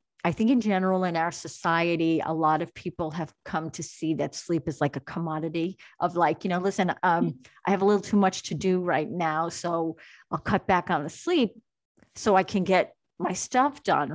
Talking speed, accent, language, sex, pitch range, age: 215 wpm, American, English, female, 160-195 Hz, 40-59